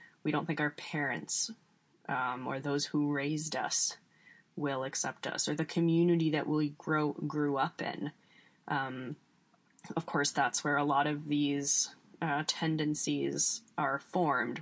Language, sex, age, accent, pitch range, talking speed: English, female, 20-39, American, 140-170 Hz, 150 wpm